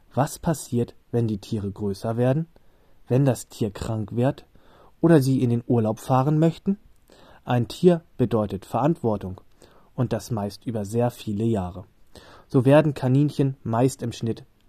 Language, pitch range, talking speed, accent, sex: German, 110-140 Hz, 145 wpm, German, male